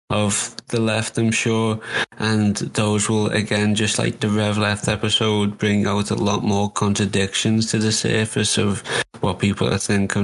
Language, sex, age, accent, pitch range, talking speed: English, male, 20-39, British, 100-110 Hz, 170 wpm